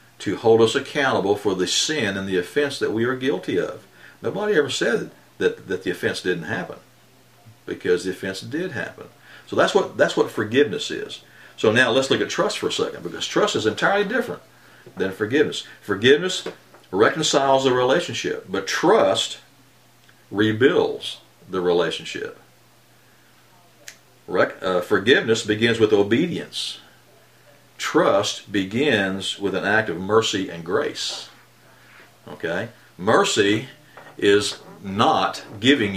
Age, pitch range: 50-69, 105-150 Hz